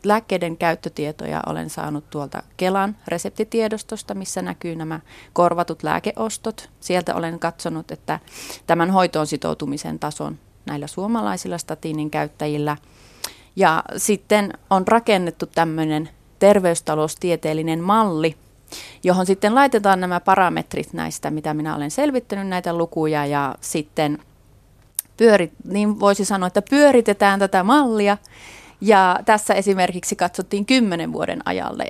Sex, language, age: female, Finnish, 30-49